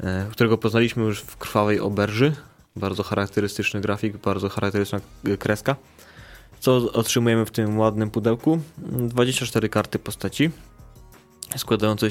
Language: Polish